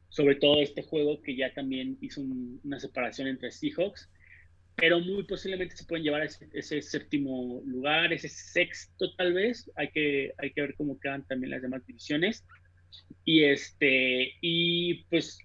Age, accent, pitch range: 30-49, Mexican, 130-165 Hz